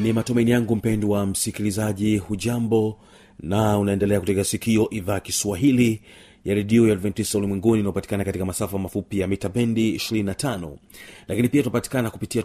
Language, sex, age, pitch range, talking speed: Swahili, male, 40-59, 105-120 Hz, 150 wpm